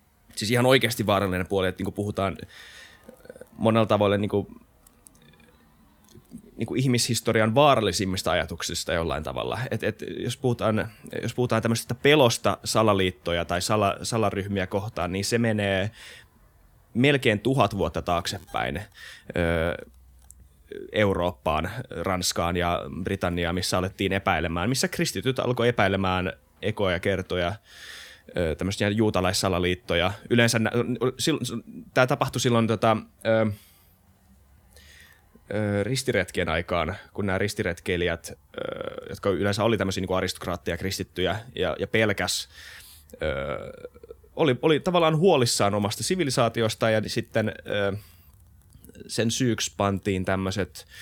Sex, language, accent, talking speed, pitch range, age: male, Finnish, native, 100 wpm, 90-115 Hz, 20-39